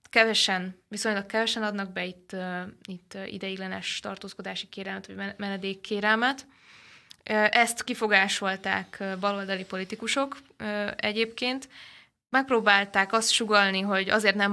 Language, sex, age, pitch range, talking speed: Hungarian, female, 20-39, 190-215 Hz, 95 wpm